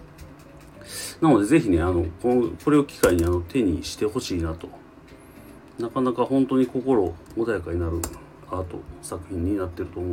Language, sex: Japanese, male